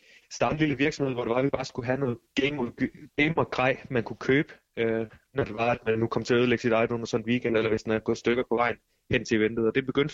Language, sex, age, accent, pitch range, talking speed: Danish, male, 20-39, native, 115-140 Hz, 300 wpm